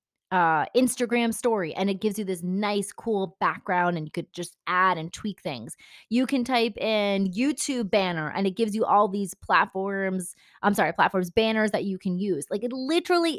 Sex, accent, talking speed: female, American, 195 wpm